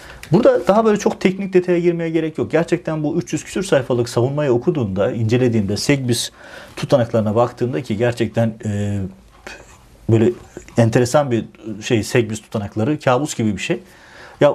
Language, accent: Turkish, native